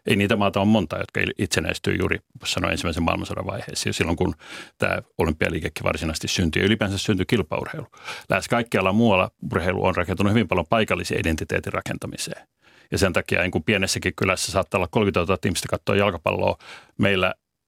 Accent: native